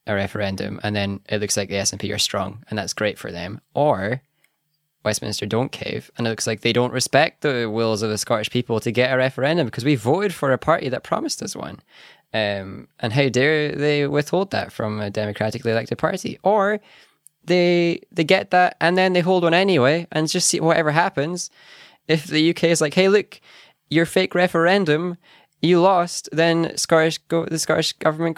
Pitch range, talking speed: 110-160 Hz, 195 wpm